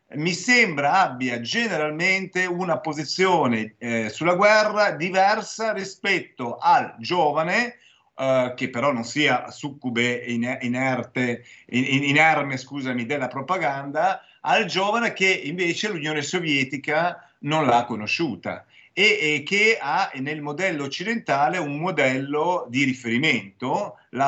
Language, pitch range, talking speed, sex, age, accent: Italian, 130-190 Hz, 105 wpm, male, 50-69, native